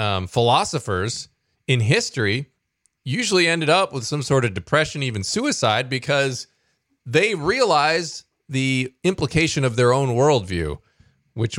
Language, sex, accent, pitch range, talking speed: English, male, American, 105-140 Hz, 125 wpm